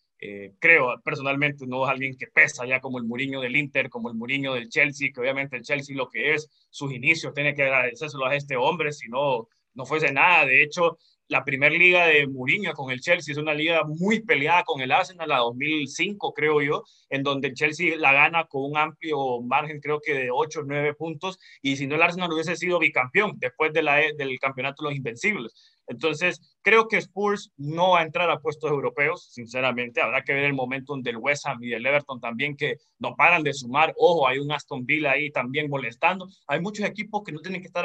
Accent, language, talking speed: Mexican, Spanish, 220 wpm